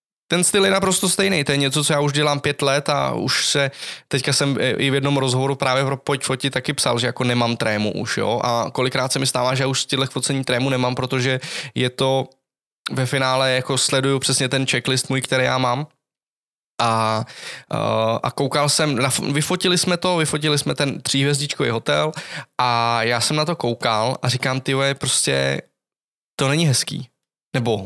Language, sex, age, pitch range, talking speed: Czech, male, 20-39, 125-150 Hz, 195 wpm